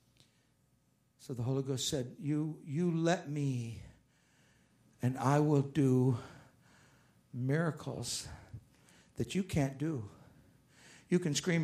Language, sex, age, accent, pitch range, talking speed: English, male, 60-79, American, 150-195 Hz, 110 wpm